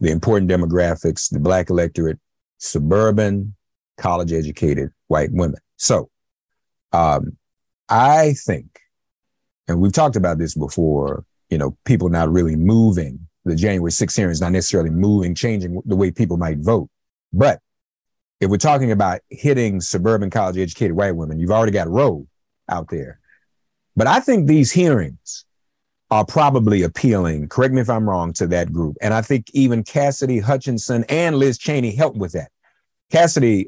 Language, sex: English, male